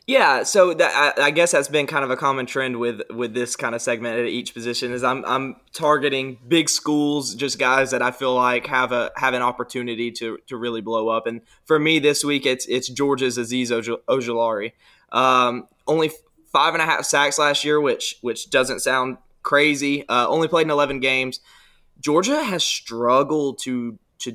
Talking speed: 195 wpm